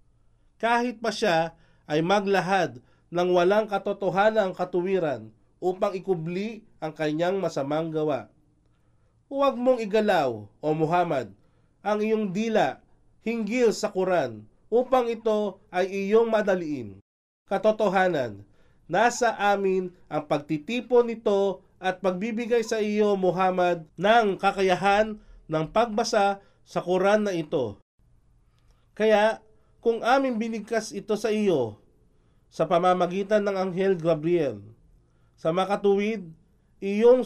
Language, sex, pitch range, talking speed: Filipino, male, 165-215 Hz, 105 wpm